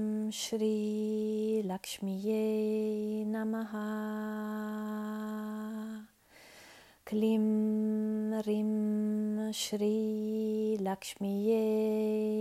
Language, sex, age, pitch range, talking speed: Italian, female, 30-49, 210-220 Hz, 60 wpm